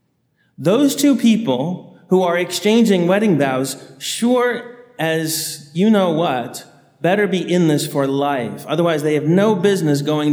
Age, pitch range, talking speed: 30-49, 140-195 Hz, 145 wpm